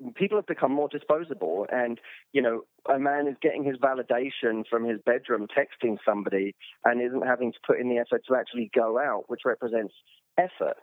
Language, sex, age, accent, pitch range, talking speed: English, male, 30-49, British, 115-140 Hz, 190 wpm